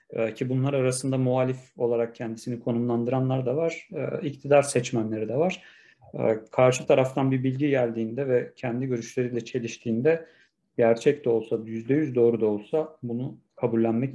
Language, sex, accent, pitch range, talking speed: Turkish, male, native, 120-145 Hz, 130 wpm